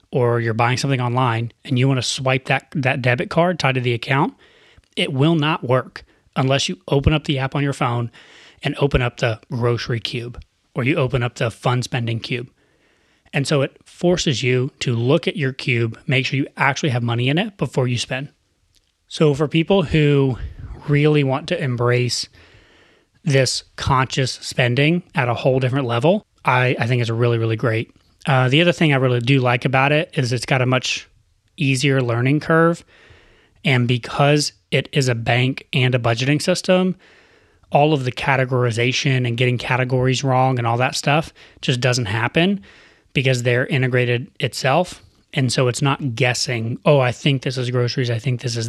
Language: English